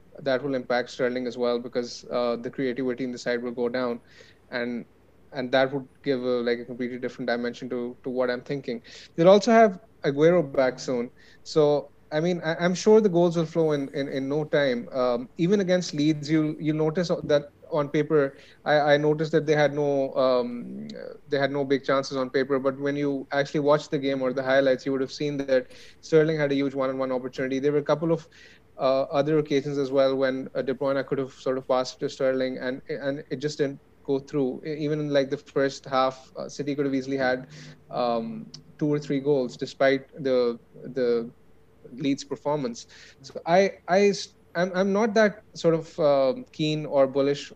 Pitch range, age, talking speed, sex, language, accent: 130-155 Hz, 30-49, 205 wpm, male, English, Indian